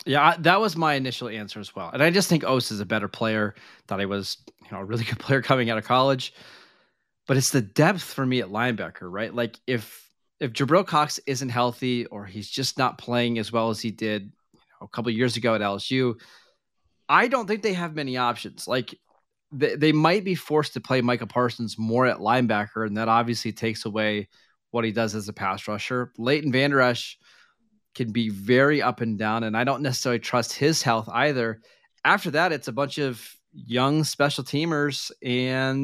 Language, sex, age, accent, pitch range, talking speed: English, male, 20-39, American, 115-145 Hz, 210 wpm